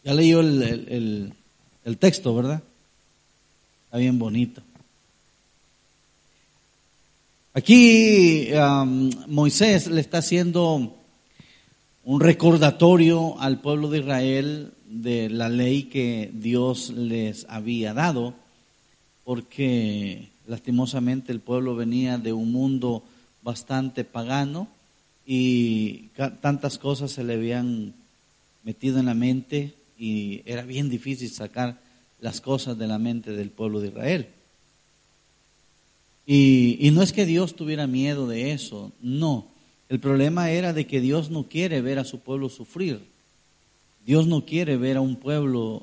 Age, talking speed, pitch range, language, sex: 40-59, 125 wpm, 120-145 Hz, Spanish, male